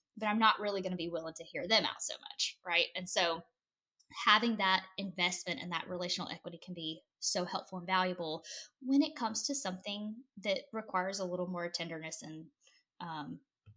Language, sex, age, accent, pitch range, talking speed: English, female, 10-29, American, 180-230 Hz, 185 wpm